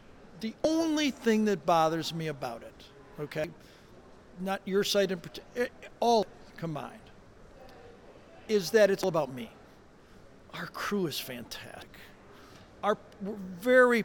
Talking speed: 120 wpm